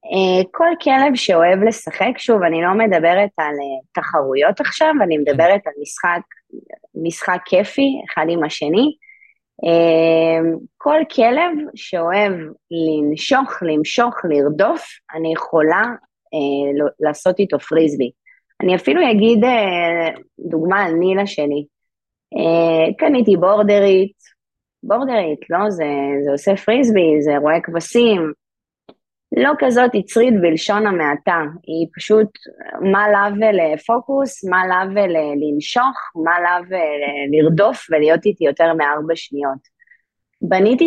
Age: 20-39